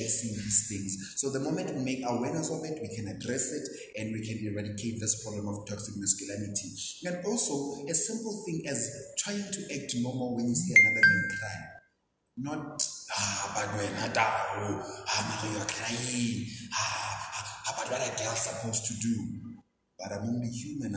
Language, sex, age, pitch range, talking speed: English, male, 30-49, 110-160 Hz, 170 wpm